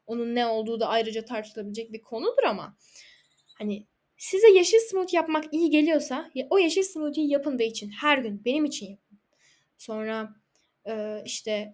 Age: 10-29